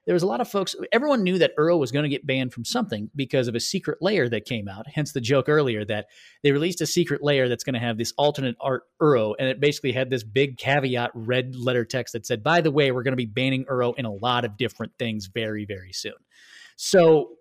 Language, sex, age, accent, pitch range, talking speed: English, male, 30-49, American, 120-170 Hz, 255 wpm